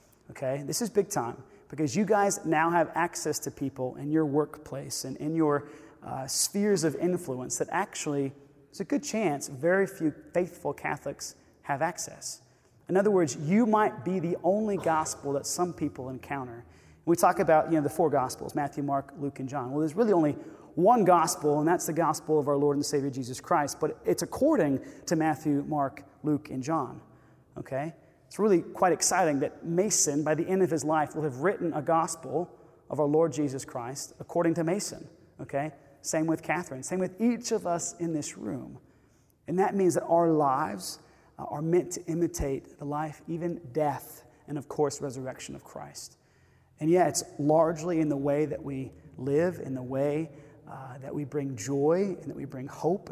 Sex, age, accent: male, 30-49, American